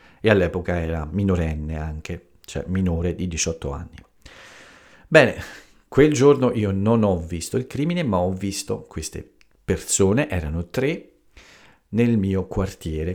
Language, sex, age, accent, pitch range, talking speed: Italian, male, 50-69, native, 85-105 Hz, 130 wpm